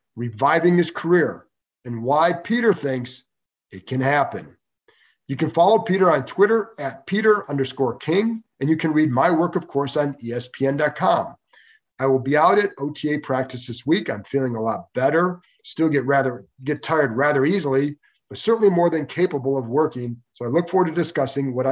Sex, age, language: male, 40-59, English